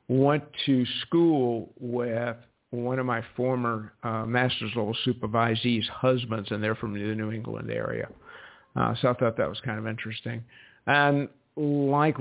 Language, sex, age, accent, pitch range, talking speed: English, male, 50-69, American, 115-130 Hz, 150 wpm